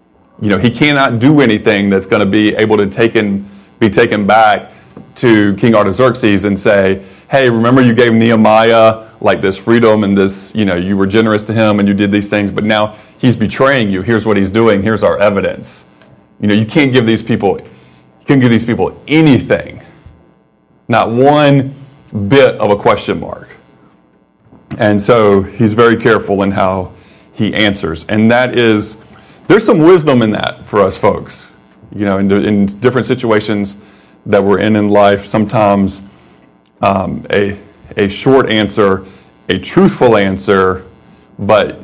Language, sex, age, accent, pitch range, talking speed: English, male, 30-49, American, 100-115 Hz, 165 wpm